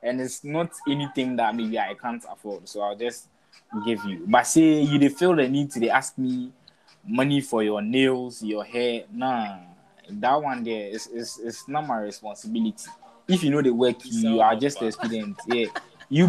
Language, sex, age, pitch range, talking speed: English, male, 20-39, 115-170 Hz, 190 wpm